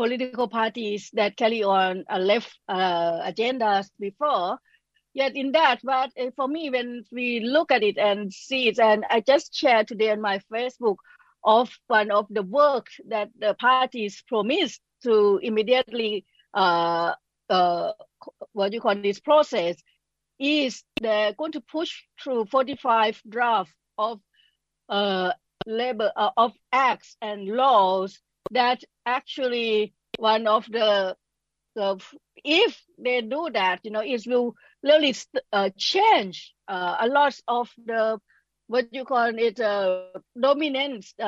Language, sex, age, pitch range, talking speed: English, female, 60-79, 205-265 Hz, 140 wpm